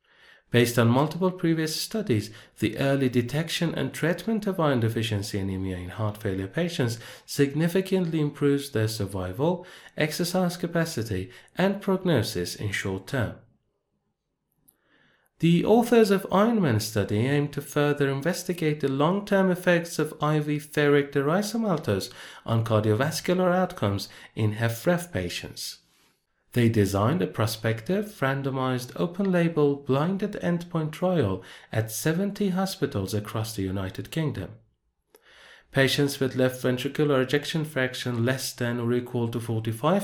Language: Persian